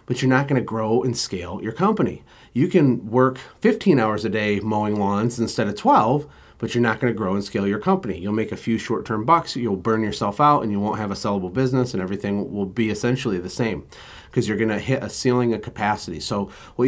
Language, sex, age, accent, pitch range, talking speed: English, male, 30-49, American, 105-130 Hz, 230 wpm